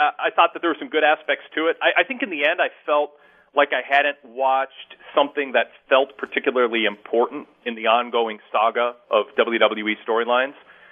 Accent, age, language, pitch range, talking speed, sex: American, 40-59, English, 120-170 Hz, 185 wpm, male